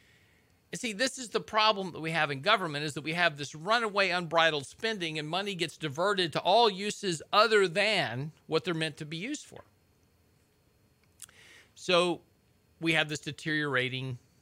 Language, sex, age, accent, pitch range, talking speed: English, male, 40-59, American, 115-165 Hz, 165 wpm